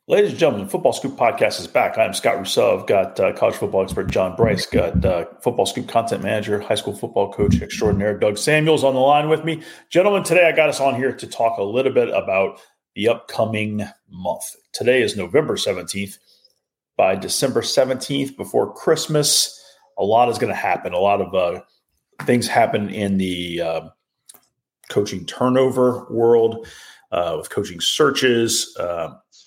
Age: 30-49